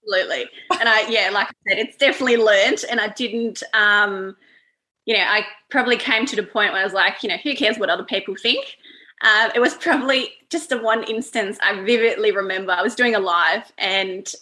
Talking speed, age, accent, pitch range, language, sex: 210 wpm, 20-39, Australian, 195-245 Hz, English, female